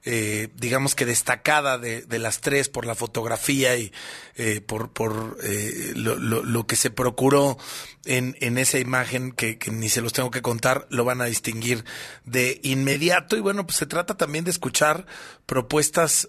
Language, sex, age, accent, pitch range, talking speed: Spanish, male, 30-49, Mexican, 120-145 Hz, 180 wpm